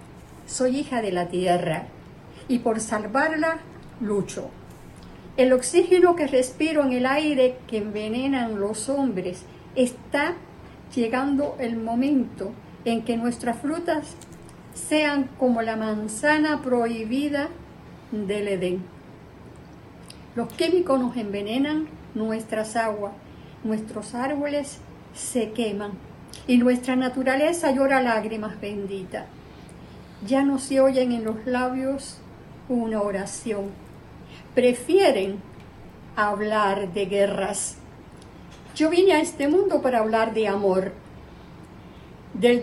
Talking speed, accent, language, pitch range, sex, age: 105 wpm, American, Spanish, 215-275 Hz, female, 50-69